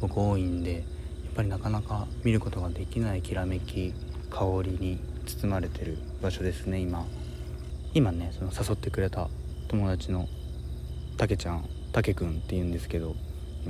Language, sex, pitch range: Japanese, male, 75-100 Hz